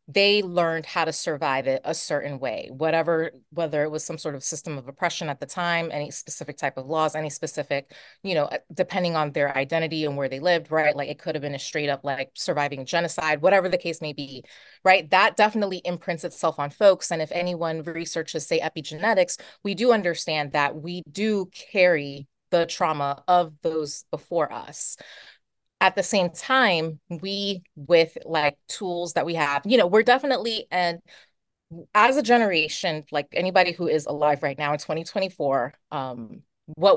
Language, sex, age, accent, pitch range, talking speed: English, female, 30-49, American, 145-180 Hz, 180 wpm